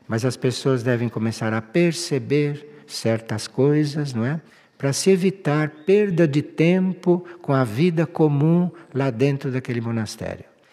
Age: 60-79